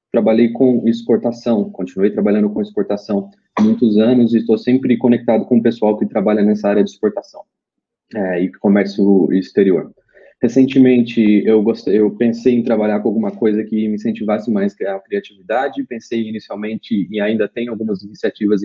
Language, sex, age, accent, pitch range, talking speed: Portuguese, male, 20-39, Brazilian, 105-125 Hz, 165 wpm